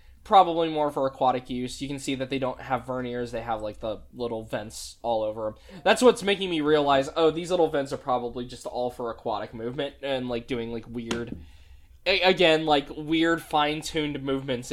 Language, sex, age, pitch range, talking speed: English, male, 10-29, 115-160 Hz, 200 wpm